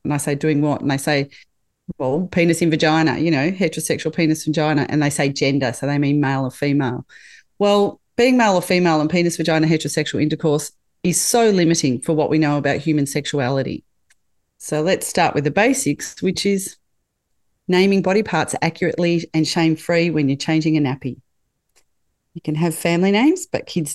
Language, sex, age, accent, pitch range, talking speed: English, female, 40-59, Australian, 150-180 Hz, 185 wpm